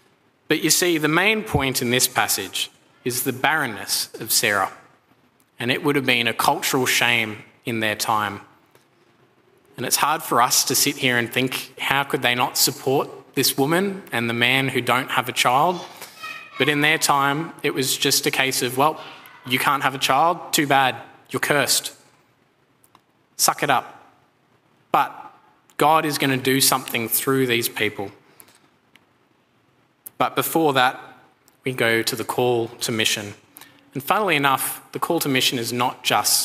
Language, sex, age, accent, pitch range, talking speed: English, male, 20-39, Australian, 120-145 Hz, 170 wpm